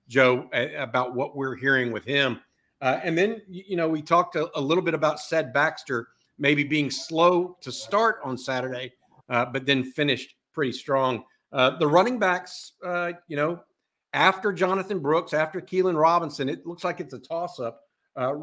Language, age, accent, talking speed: English, 50-69, American, 175 wpm